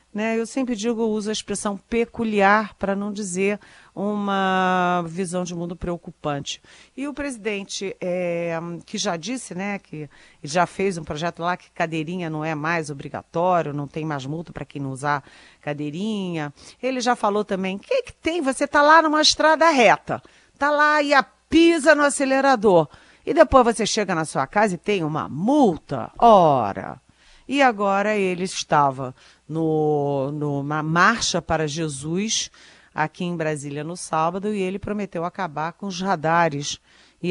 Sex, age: female, 40-59